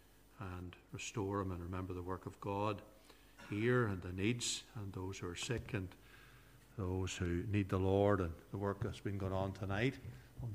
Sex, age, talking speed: male, 60-79, 190 wpm